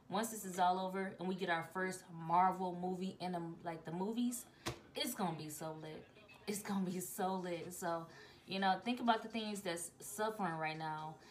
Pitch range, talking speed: 170-200 Hz, 205 wpm